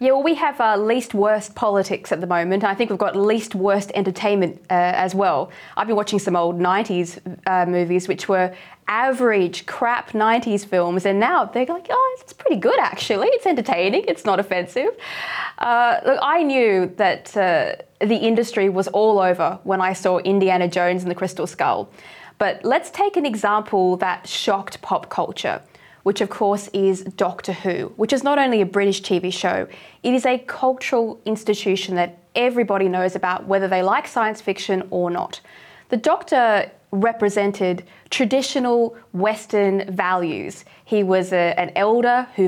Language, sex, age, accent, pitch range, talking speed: English, female, 20-39, Australian, 185-235 Hz, 170 wpm